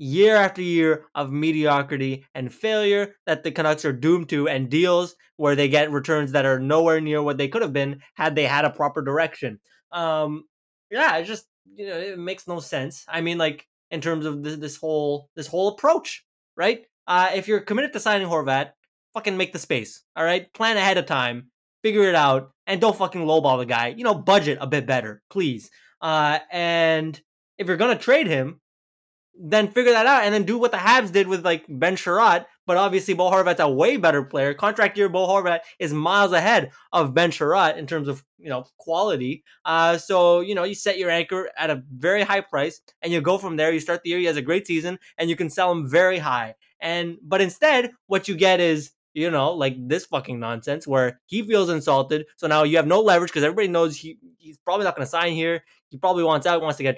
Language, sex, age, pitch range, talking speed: English, male, 20-39, 150-190 Hz, 225 wpm